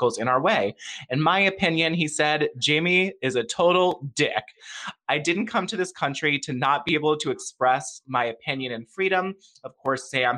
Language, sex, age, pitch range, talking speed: English, male, 20-39, 125-160 Hz, 185 wpm